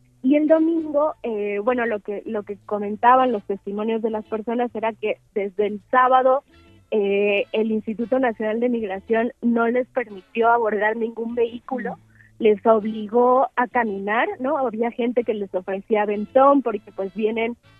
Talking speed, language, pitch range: 155 wpm, Spanish, 210-250 Hz